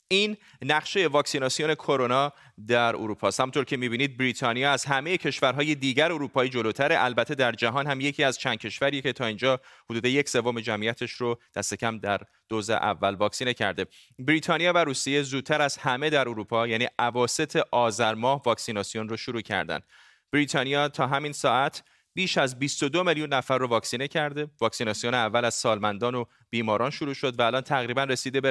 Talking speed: 170 wpm